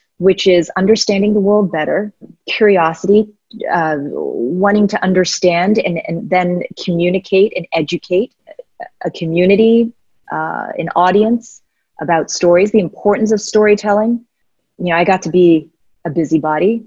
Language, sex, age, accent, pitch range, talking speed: English, female, 30-49, American, 160-200 Hz, 130 wpm